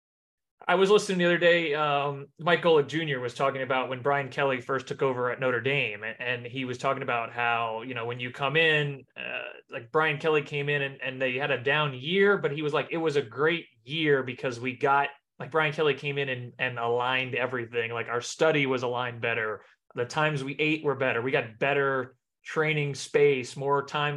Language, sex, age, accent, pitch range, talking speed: English, male, 20-39, American, 130-155 Hz, 215 wpm